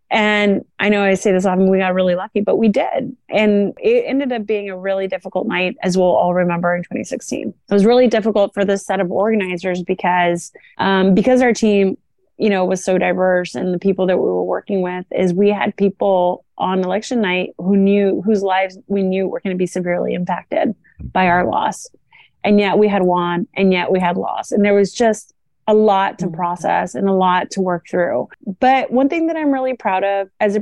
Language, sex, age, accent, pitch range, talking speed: English, female, 30-49, American, 185-215 Hz, 220 wpm